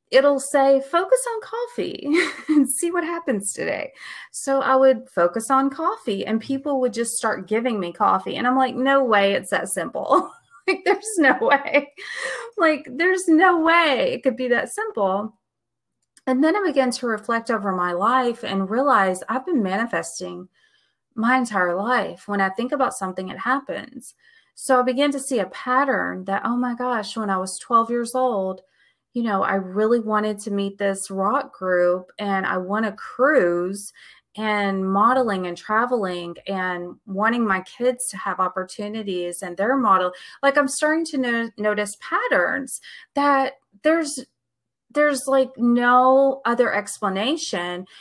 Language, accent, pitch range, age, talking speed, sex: English, American, 195-275 Hz, 30-49, 160 wpm, female